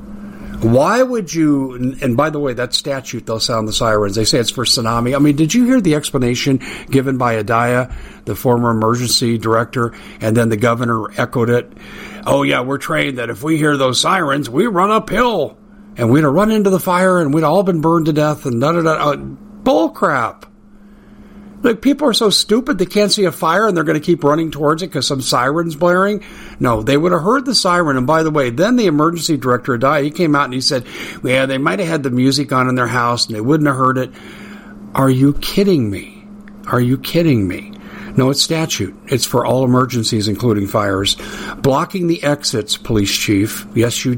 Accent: American